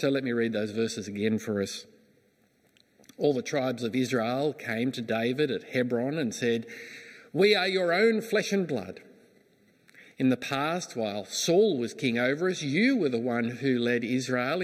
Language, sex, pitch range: English, male, 120-195 Hz